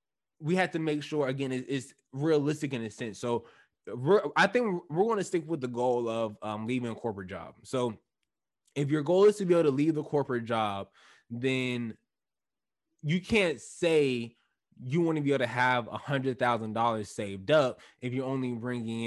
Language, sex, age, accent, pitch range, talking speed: English, male, 20-39, American, 115-150 Hz, 180 wpm